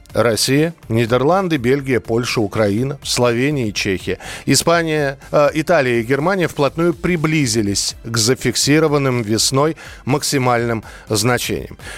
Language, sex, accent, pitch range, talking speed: Russian, male, native, 125-160 Hz, 95 wpm